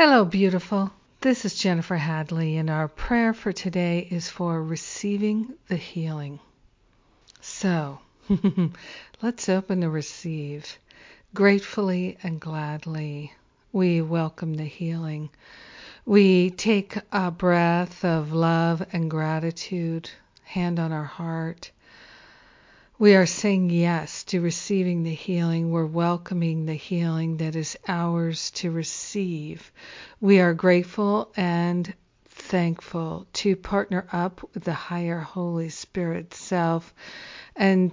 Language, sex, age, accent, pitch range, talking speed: English, female, 60-79, American, 165-190 Hz, 115 wpm